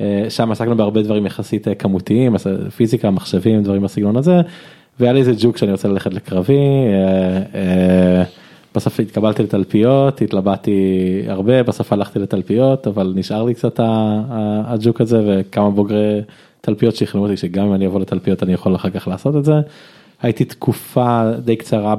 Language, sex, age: Hebrew, male, 20-39